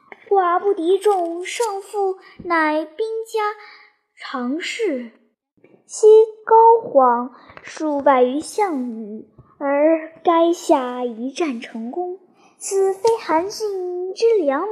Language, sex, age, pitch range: Chinese, male, 10-29, 250-380 Hz